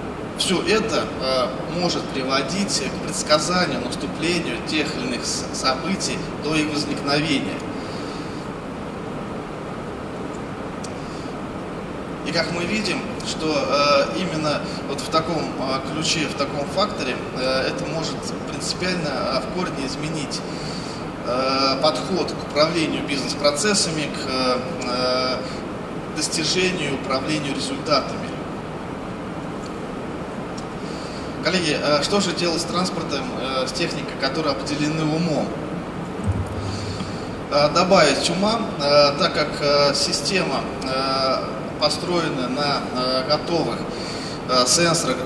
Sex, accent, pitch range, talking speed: male, native, 135-165 Hz, 80 wpm